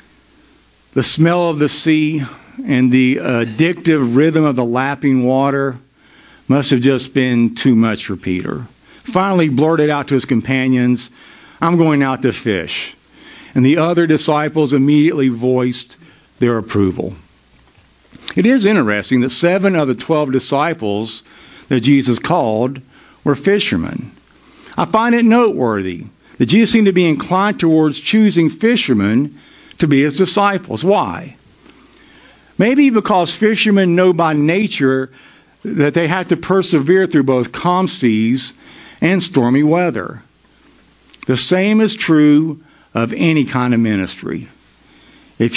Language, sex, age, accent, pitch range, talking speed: English, male, 50-69, American, 130-185 Hz, 130 wpm